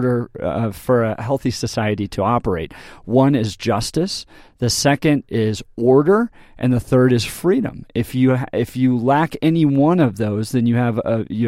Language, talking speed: English, 175 wpm